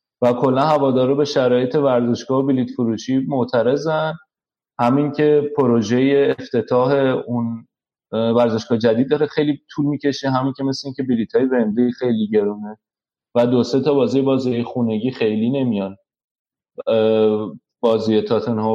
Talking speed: 130 wpm